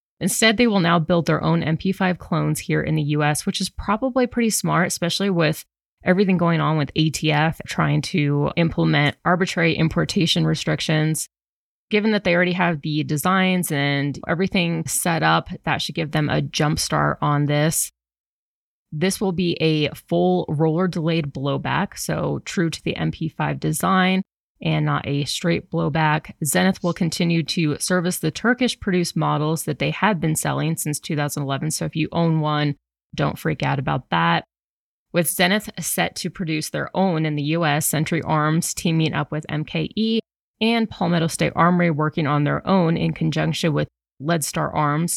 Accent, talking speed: American, 165 wpm